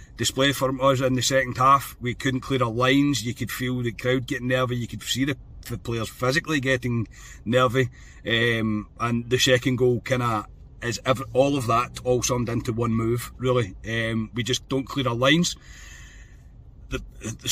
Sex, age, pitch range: male, 40-59, 110-130 Hz